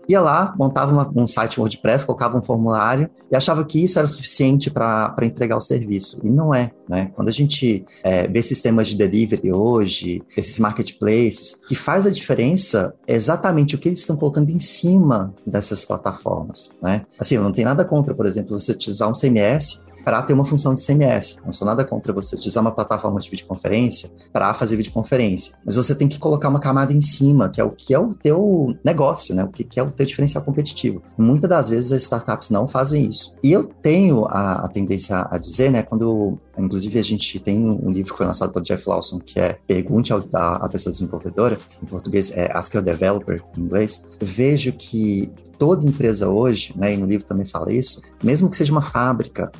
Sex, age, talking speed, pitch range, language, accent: male, 30-49, 210 wpm, 105-140 Hz, English, Brazilian